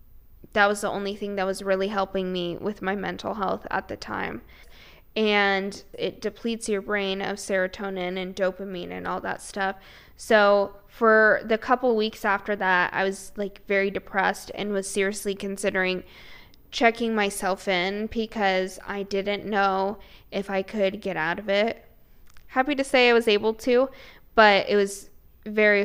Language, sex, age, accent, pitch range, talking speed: English, female, 10-29, American, 190-215 Hz, 165 wpm